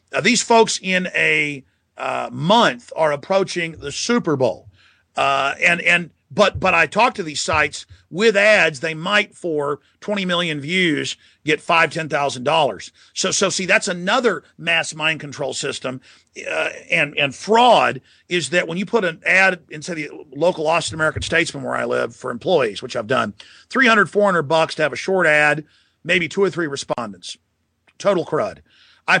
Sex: male